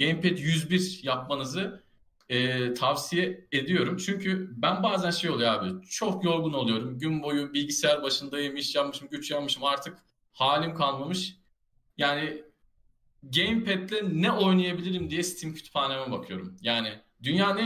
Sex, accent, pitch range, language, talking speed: male, native, 125-180 Hz, Turkish, 120 wpm